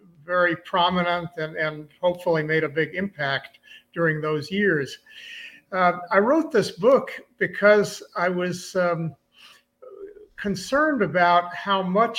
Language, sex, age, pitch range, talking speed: English, male, 50-69, 160-200 Hz, 125 wpm